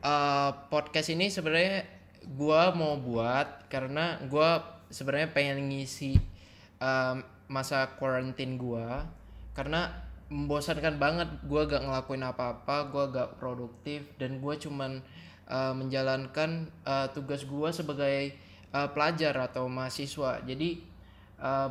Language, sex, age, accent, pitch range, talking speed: Indonesian, male, 10-29, native, 125-150 Hz, 115 wpm